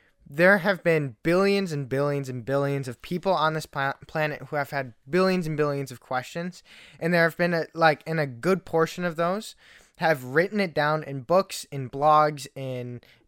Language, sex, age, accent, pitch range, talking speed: English, male, 10-29, American, 135-170 Hz, 190 wpm